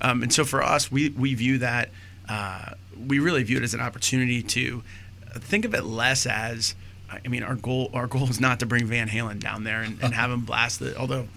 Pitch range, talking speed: 110-135 Hz, 230 wpm